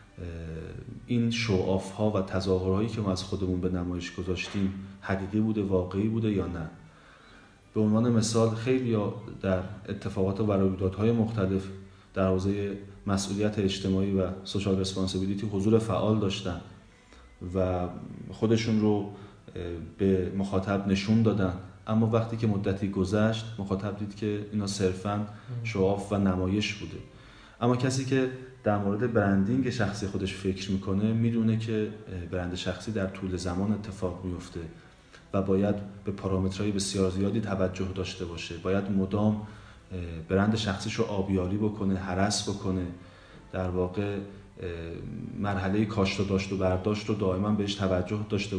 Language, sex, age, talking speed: Persian, male, 30-49, 130 wpm